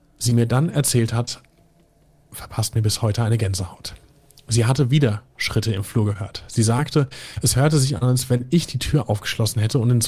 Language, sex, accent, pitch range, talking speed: German, male, German, 110-140 Hz, 195 wpm